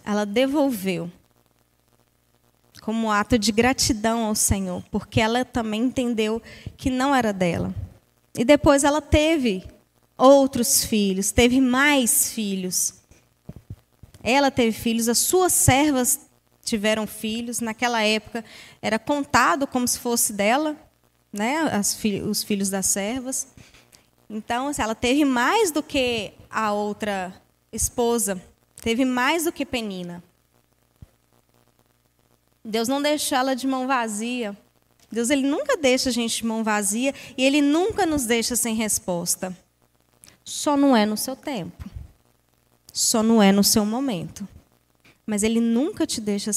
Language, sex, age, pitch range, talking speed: Portuguese, female, 10-29, 180-255 Hz, 130 wpm